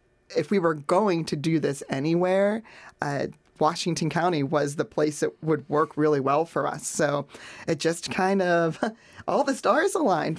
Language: English